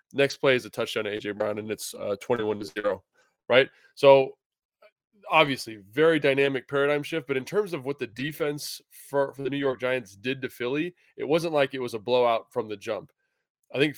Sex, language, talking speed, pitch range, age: male, English, 210 wpm, 115-140 Hz, 20-39